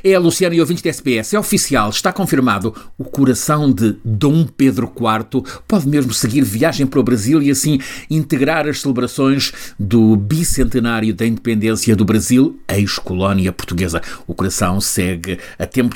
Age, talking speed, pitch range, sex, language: 50-69, 160 wpm, 105-135 Hz, male, Portuguese